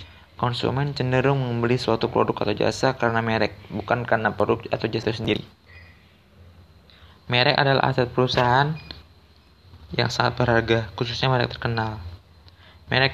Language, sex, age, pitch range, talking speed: Indonesian, male, 20-39, 95-125 Hz, 125 wpm